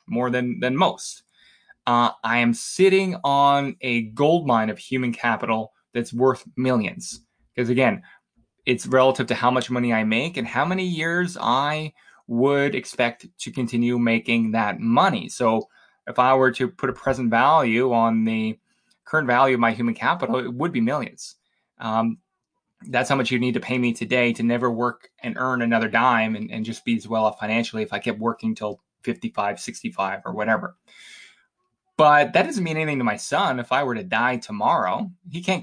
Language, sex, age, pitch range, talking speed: English, male, 20-39, 120-170 Hz, 185 wpm